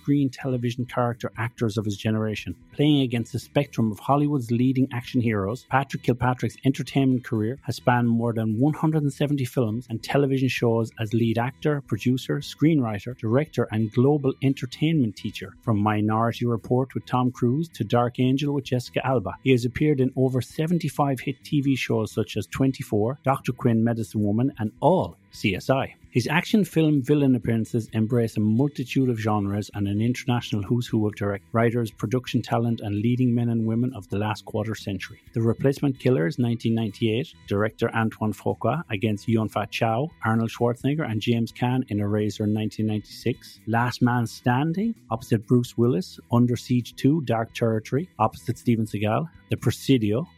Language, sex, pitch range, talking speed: English, male, 110-130 Hz, 165 wpm